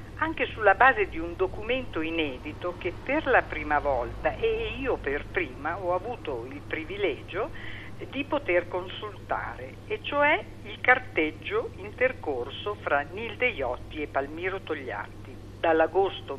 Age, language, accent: 50-69, Italian, native